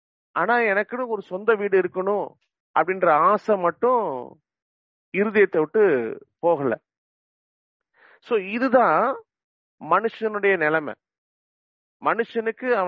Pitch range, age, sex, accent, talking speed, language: 150-225 Hz, 40-59, male, Indian, 85 wpm, English